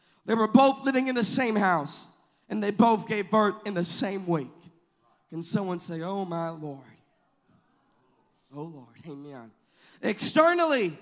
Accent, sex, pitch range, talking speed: American, male, 230-285 Hz, 145 wpm